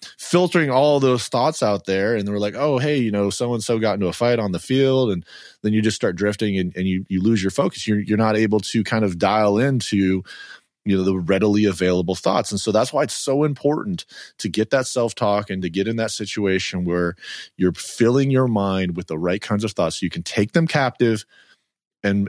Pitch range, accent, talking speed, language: 95-120 Hz, American, 235 wpm, English